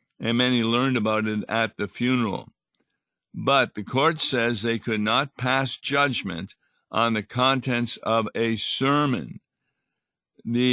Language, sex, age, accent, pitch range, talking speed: English, male, 50-69, American, 110-130 Hz, 135 wpm